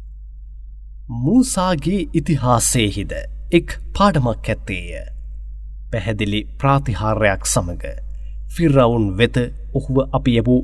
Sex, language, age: male, English, 30-49